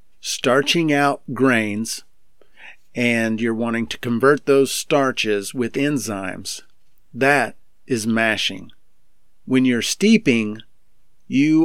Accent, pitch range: American, 110-140 Hz